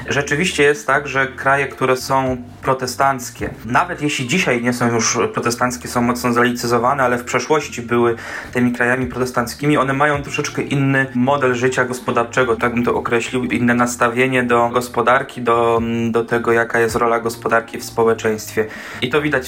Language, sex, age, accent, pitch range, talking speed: Polish, male, 20-39, native, 115-130 Hz, 160 wpm